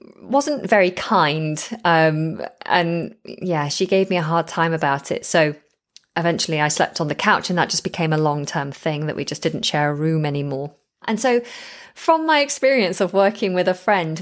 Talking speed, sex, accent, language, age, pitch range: 195 wpm, female, British, English, 30-49, 160-205 Hz